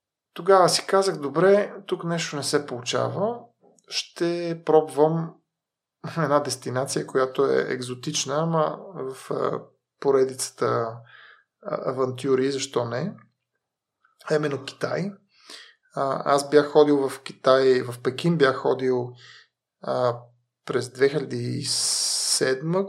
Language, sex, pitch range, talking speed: Bulgarian, male, 130-165 Hz, 95 wpm